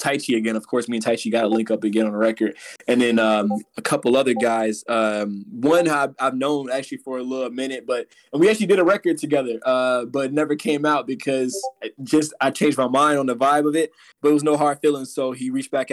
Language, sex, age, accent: English, male, 20-39, American